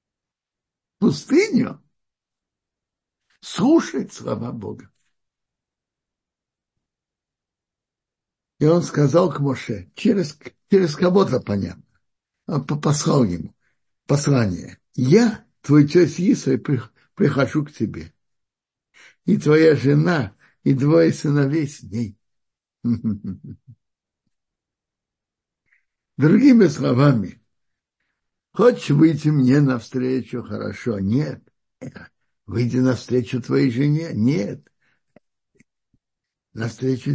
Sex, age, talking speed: male, 60-79, 75 wpm